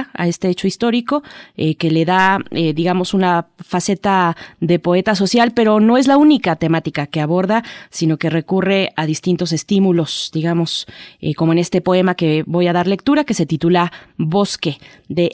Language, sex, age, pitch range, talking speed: Spanish, female, 20-39, 155-185 Hz, 175 wpm